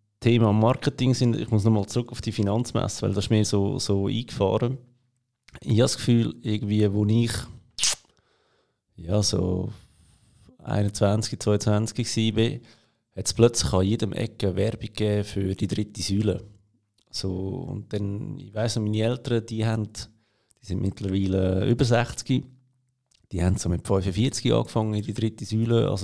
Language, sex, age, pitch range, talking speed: German, male, 30-49, 105-125 Hz, 150 wpm